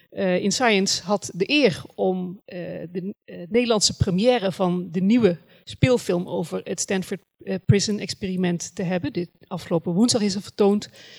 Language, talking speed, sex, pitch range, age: Dutch, 160 wpm, female, 180-235 Hz, 40-59